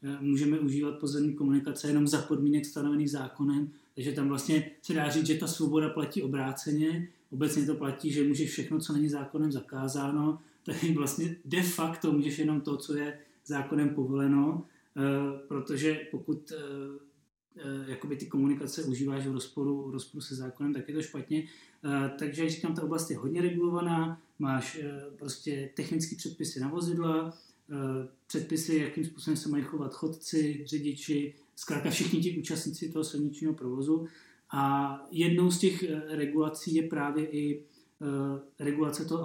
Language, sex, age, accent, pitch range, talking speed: Czech, male, 20-39, native, 140-160 Hz, 145 wpm